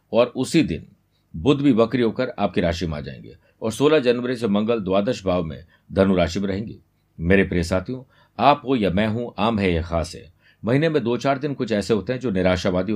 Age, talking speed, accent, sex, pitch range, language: 50-69, 220 wpm, native, male, 95-120 Hz, Hindi